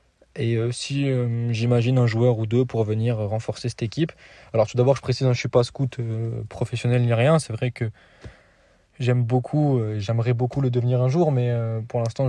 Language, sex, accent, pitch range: French, male, French, 115-130 Hz